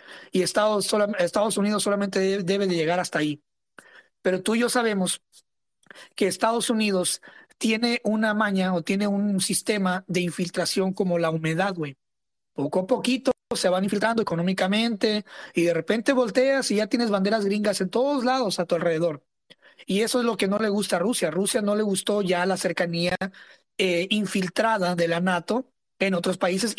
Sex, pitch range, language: male, 180-220 Hz, English